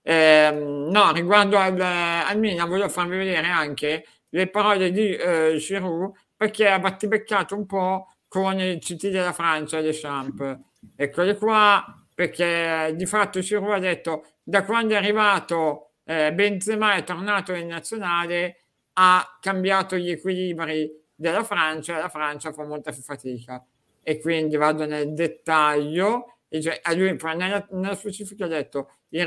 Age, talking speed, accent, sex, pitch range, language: 60-79, 150 wpm, native, male, 150-195 Hz, Italian